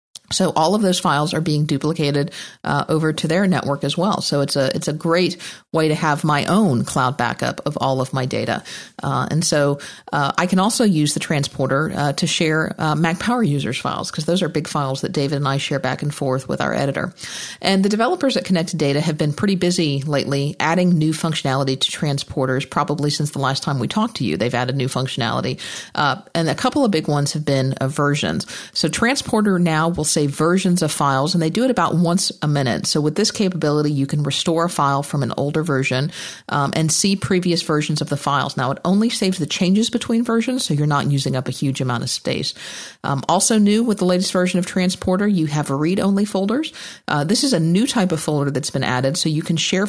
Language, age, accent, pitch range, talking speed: English, 50-69, American, 140-180 Hz, 230 wpm